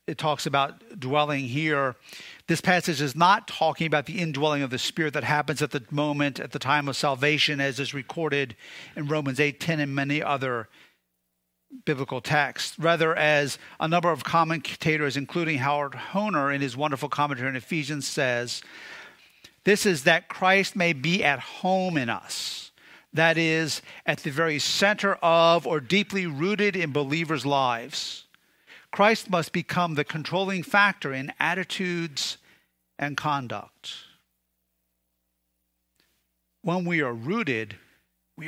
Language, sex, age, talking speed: English, male, 50-69, 145 wpm